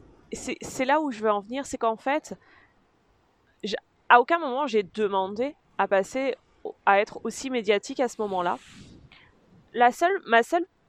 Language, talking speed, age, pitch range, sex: French, 165 wpm, 20-39, 195-255 Hz, female